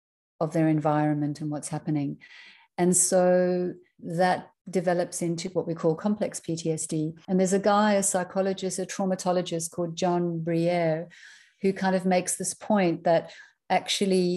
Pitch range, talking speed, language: 160-185 Hz, 145 wpm, English